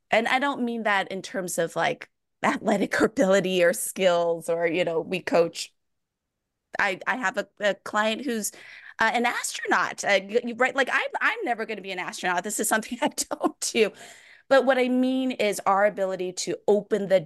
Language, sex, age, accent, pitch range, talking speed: English, female, 20-39, American, 170-220 Hz, 195 wpm